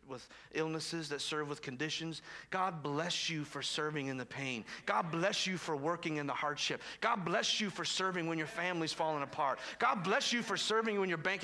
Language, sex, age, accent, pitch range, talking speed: English, male, 40-59, American, 170-265 Hz, 210 wpm